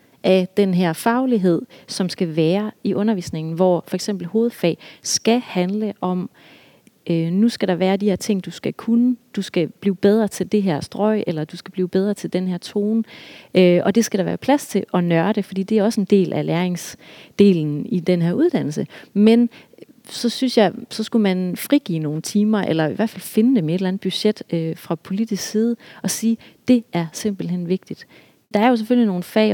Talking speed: 210 wpm